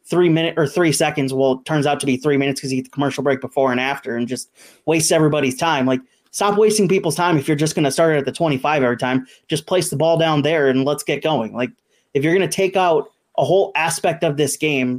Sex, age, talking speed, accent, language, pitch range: male, 30-49, 260 wpm, American, English, 140-165 Hz